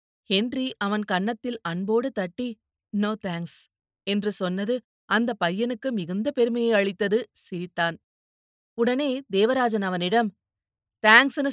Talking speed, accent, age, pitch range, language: 100 wpm, native, 30-49, 185-230 Hz, Tamil